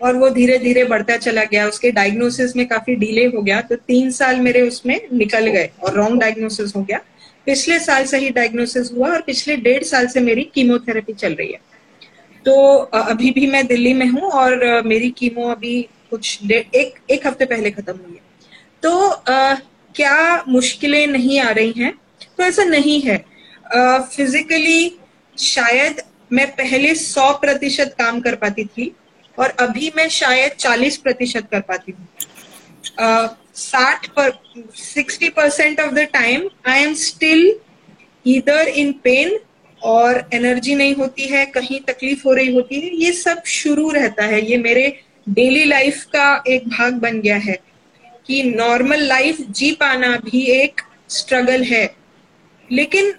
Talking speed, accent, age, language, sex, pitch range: 150 wpm, Indian, 20-39, English, female, 235-285 Hz